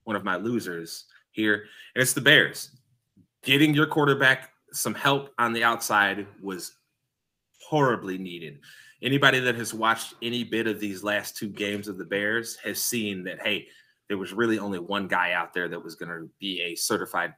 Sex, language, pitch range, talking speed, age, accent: male, English, 105-130 Hz, 185 wpm, 20-39, American